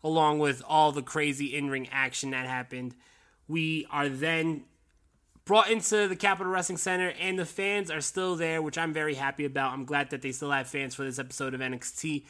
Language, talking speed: English, 205 wpm